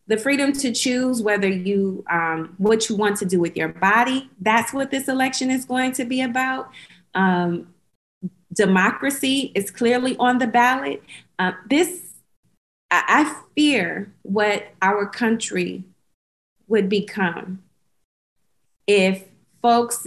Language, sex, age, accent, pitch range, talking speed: English, female, 30-49, American, 175-220 Hz, 130 wpm